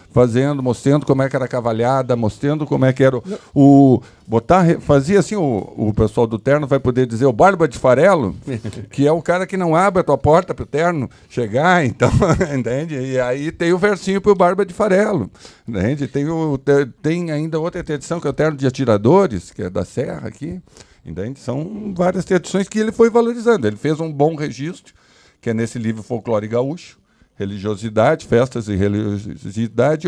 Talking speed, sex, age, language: 195 wpm, male, 50-69, Portuguese